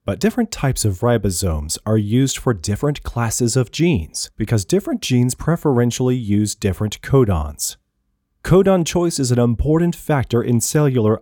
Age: 30-49